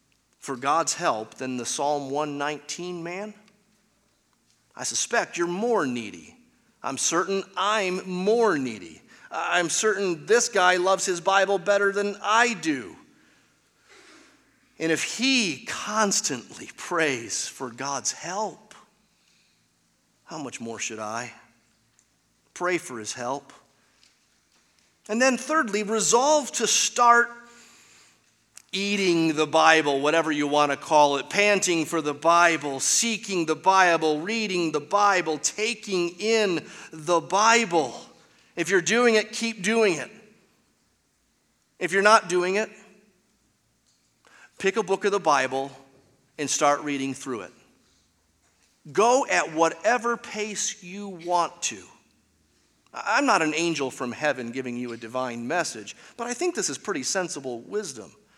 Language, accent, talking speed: English, American, 125 wpm